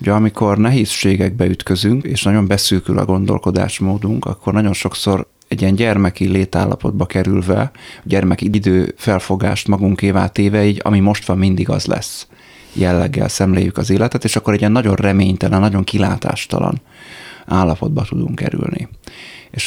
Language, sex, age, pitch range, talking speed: Hungarian, male, 30-49, 95-110 Hz, 135 wpm